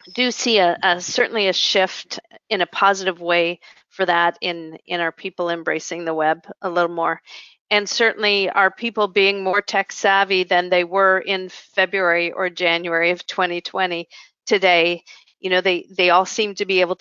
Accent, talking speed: American, 175 wpm